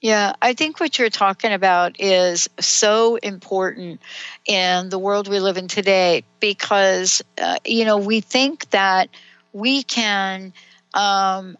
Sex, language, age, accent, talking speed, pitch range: female, English, 60-79, American, 140 wpm, 185-230 Hz